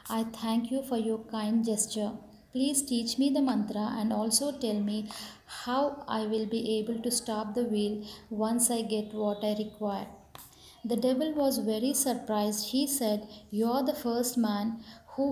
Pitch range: 215-245 Hz